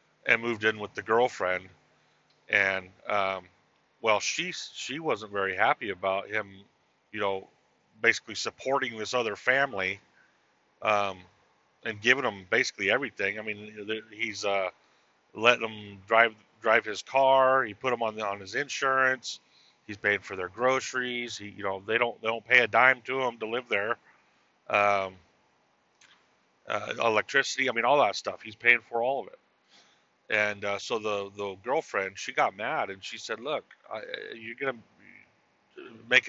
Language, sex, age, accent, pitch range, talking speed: English, male, 40-59, American, 100-120 Hz, 165 wpm